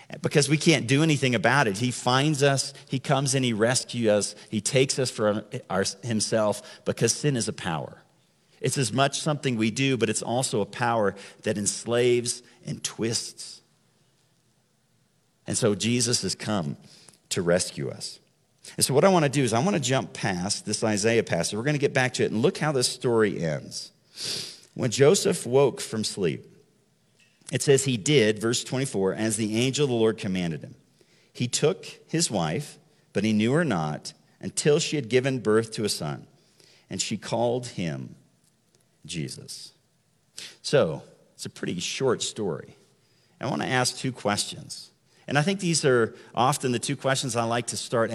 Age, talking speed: 50-69, 175 wpm